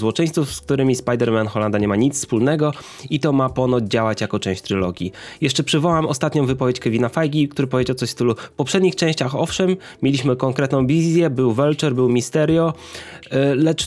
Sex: male